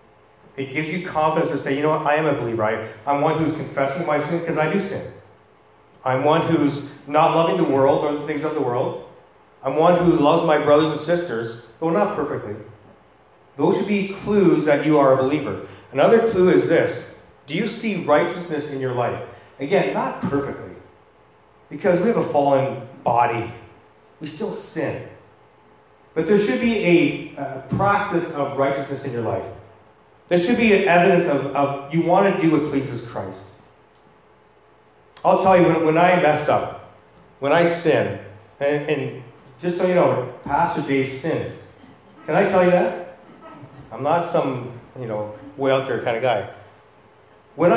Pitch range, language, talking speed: 135-175 Hz, English, 180 wpm